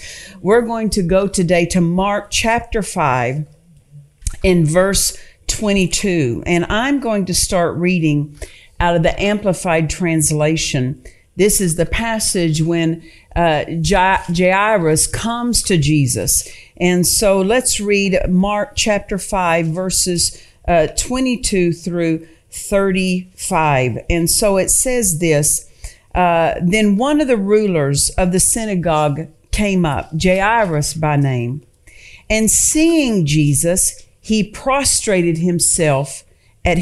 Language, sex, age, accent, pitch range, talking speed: English, female, 50-69, American, 155-205 Hz, 115 wpm